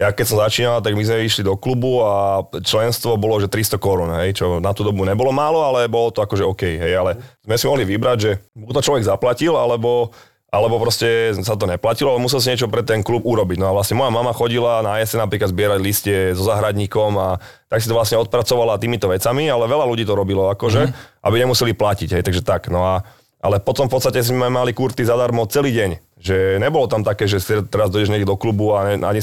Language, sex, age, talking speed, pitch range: Slovak, male, 30-49, 230 wpm, 100-120 Hz